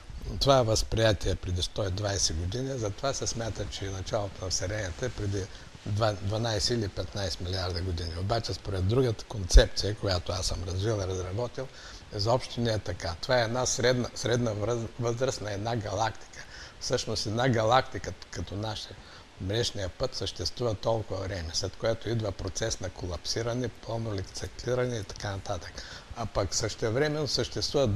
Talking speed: 150 wpm